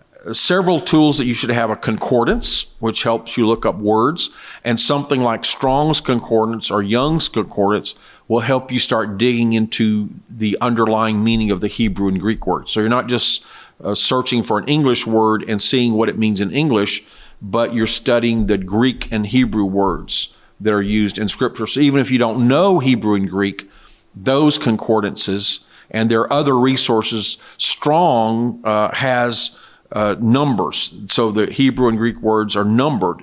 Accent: American